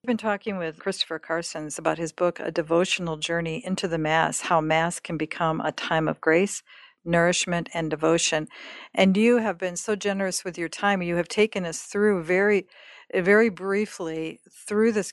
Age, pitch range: 50-69, 170-205 Hz